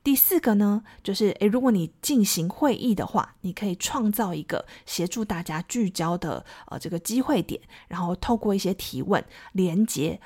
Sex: female